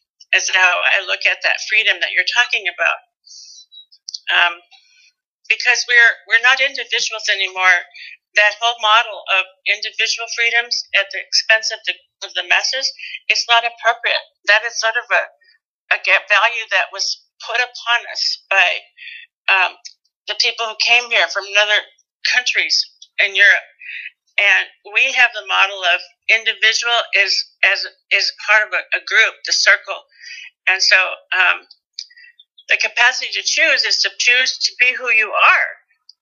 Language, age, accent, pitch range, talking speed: English, 60-79, American, 200-300 Hz, 150 wpm